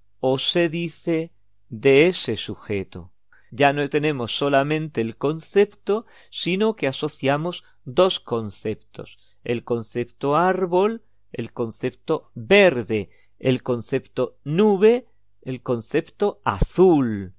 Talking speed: 100 wpm